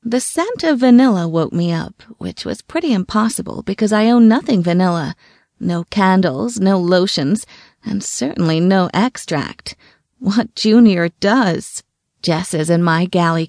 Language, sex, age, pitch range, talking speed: English, female, 30-49, 170-225 Hz, 140 wpm